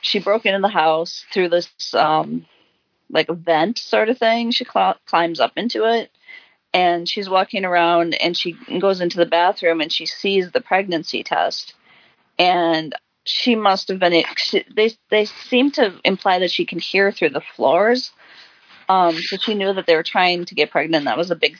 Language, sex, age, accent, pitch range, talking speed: English, female, 40-59, American, 160-205 Hz, 190 wpm